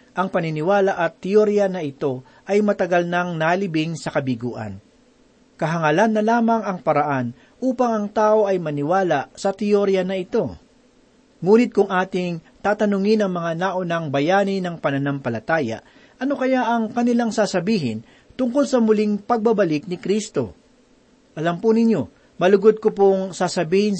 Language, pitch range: Filipino, 165-215 Hz